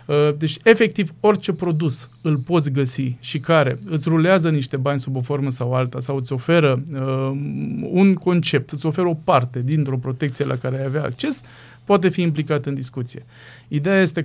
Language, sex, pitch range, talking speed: Romanian, male, 130-175 Hz, 175 wpm